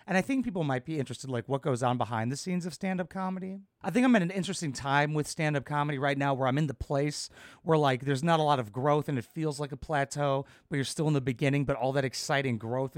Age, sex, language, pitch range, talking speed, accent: 30-49, male, English, 120-160 Hz, 275 wpm, American